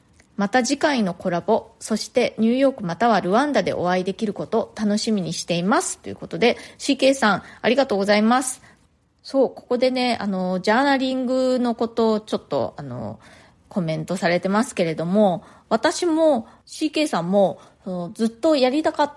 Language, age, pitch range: Japanese, 20-39, 180-255 Hz